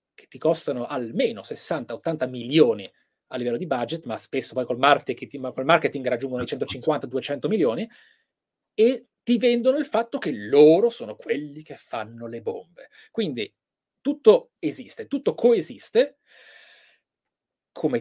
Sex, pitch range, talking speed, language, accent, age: male, 130-175 Hz, 125 wpm, Italian, native, 30-49